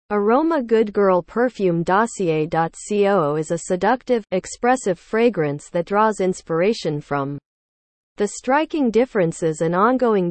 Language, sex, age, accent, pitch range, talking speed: English, female, 40-59, American, 165-230 Hz, 110 wpm